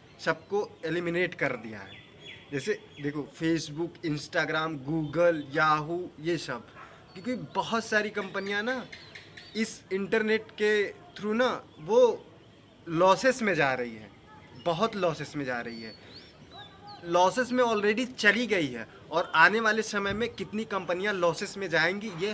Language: Hindi